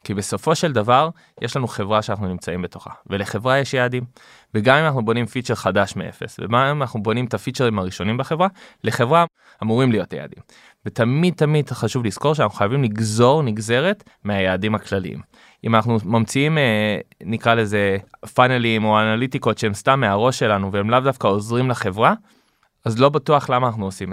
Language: Hebrew